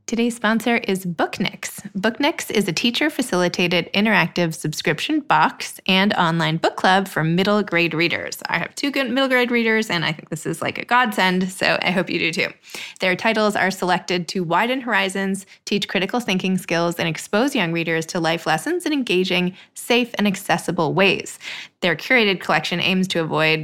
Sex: female